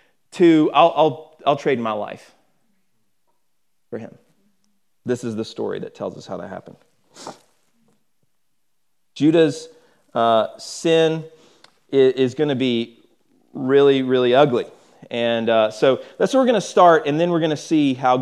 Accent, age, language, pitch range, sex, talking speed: American, 30-49, English, 125-180 Hz, male, 150 wpm